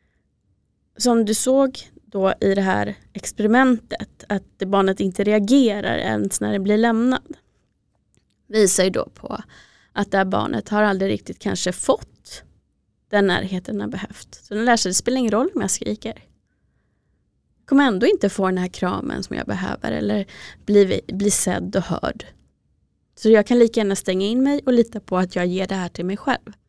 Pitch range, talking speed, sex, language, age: 195-235 Hz, 185 wpm, female, Swedish, 20-39